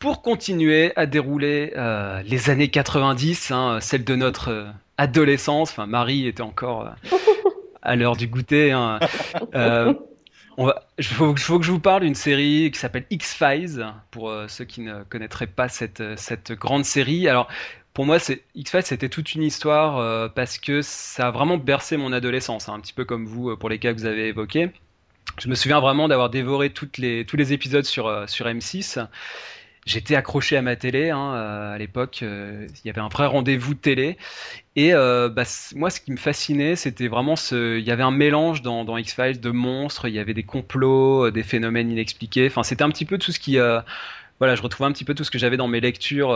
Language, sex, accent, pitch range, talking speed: French, male, French, 115-145 Hz, 210 wpm